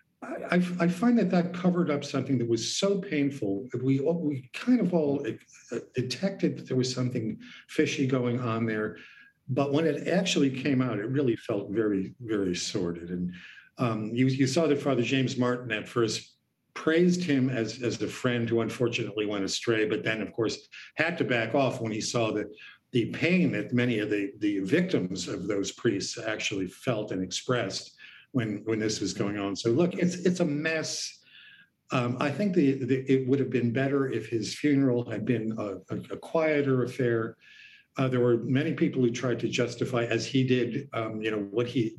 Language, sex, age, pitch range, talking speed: English, male, 50-69, 115-145 Hz, 195 wpm